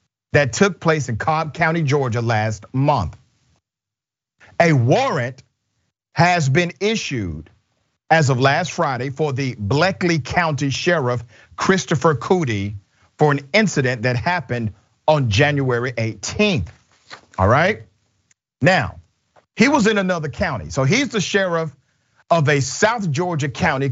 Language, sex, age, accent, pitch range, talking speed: English, male, 50-69, American, 120-170 Hz, 125 wpm